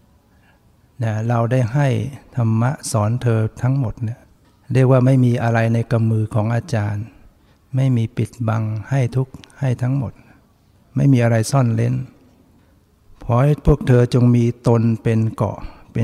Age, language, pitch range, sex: 60-79, Thai, 105-125 Hz, male